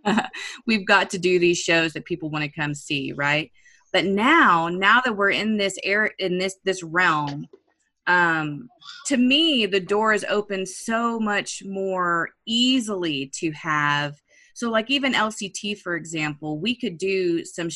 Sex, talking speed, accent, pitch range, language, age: female, 160 wpm, American, 165-215 Hz, English, 20-39